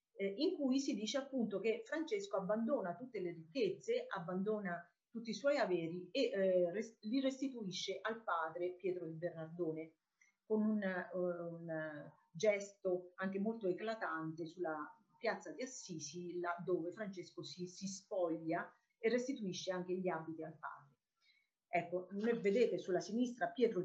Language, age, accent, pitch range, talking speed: Italian, 40-59, native, 175-235 Hz, 135 wpm